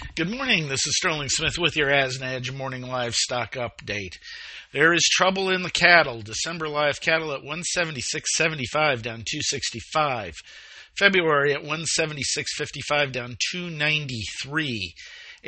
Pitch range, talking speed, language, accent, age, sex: 125-155 Hz, 115 wpm, English, American, 50-69, male